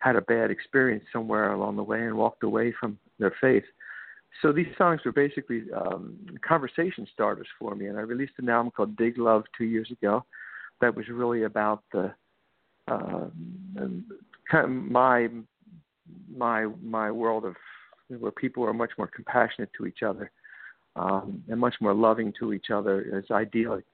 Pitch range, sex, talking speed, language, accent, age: 115-135 Hz, male, 170 wpm, English, American, 50-69